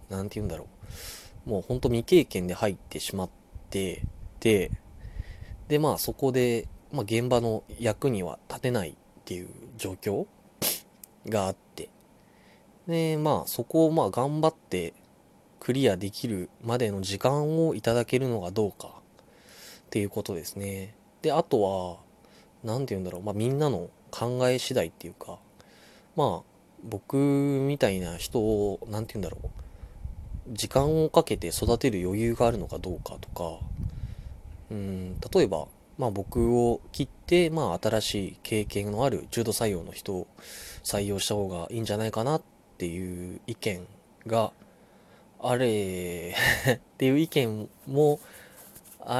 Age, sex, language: 20-39, male, Japanese